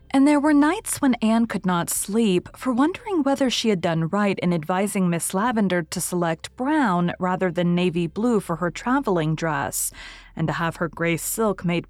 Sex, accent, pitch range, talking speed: female, American, 175-215 Hz, 190 wpm